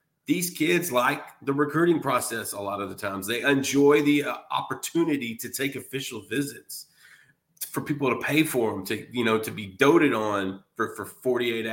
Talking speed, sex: 180 wpm, male